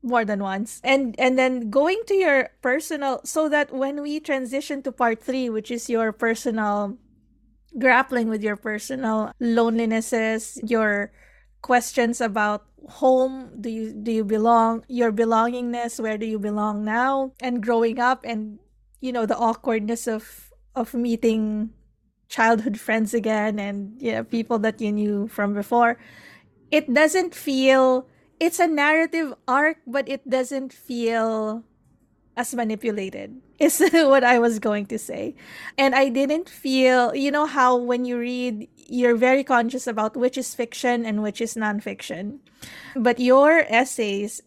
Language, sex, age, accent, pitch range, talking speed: English, female, 20-39, Filipino, 220-265 Hz, 145 wpm